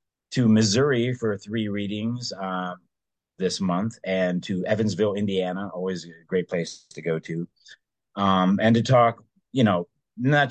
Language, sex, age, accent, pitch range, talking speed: English, male, 30-49, American, 90-110 Hz, 150 wpm